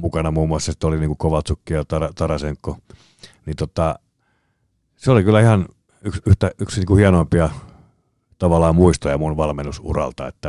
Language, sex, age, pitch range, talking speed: Finnish, male, 50-69, 80-95 Hz, 155 wpm